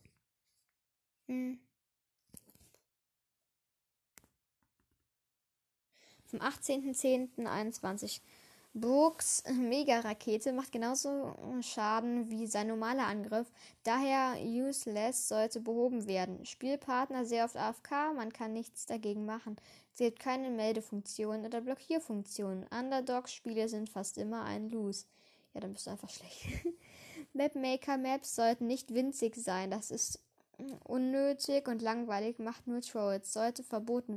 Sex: female